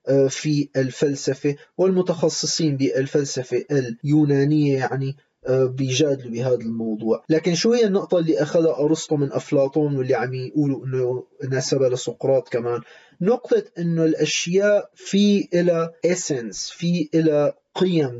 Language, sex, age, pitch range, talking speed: Arabic, male, 30-49, 145-185 Hz, 110 wpm